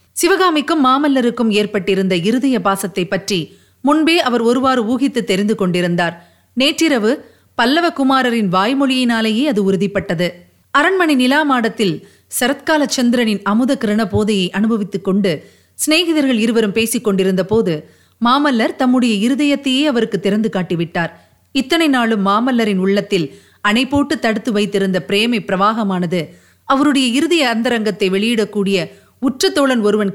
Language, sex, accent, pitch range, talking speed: Tamil, female, native, 200-280 Hz, 105 wpm